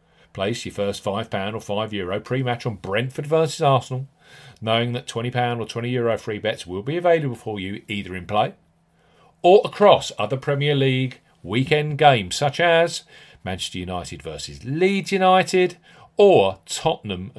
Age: 40-59